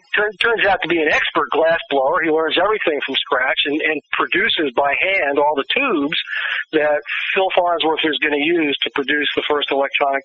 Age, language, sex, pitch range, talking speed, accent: 40-59, English, male, 150-220 Hz, 195 wpm, American